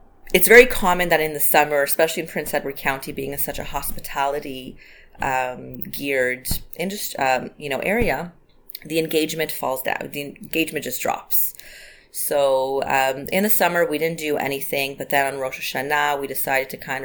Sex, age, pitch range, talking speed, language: female, 30-49, 135-160 Hz, 175 wpm, English